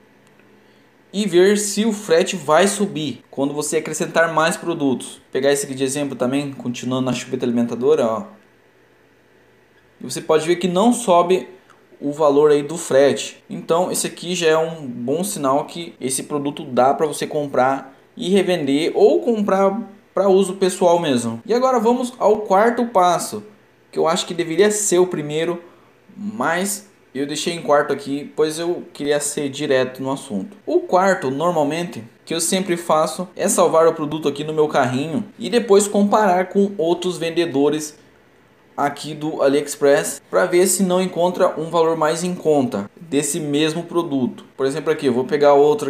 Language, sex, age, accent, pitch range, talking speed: Portuguese, male, 20-39, Brazilian, 140-185 Hz, 170 wpm